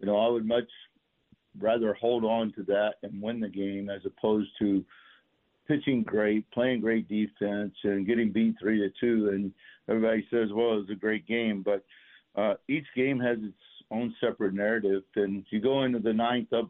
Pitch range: 105-120 Hz